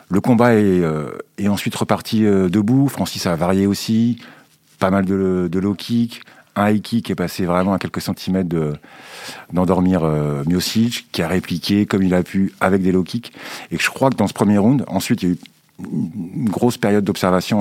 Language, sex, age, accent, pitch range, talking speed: French, male, 50-69, French, 85-110 Hz, 195 wpm